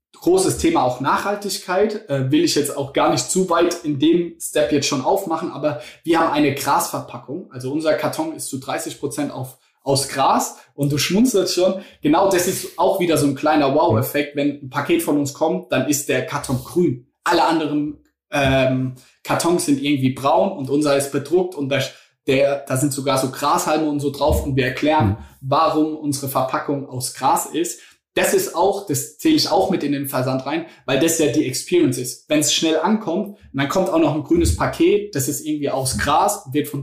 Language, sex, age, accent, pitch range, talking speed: German, male, 20-39, German, 140-170 Hz, 200 wpm